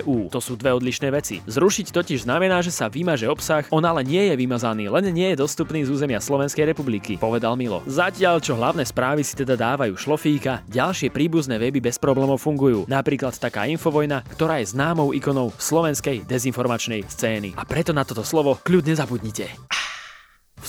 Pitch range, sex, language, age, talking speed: 130-170 Hz, male, Slovak, 20-39, 175 wpm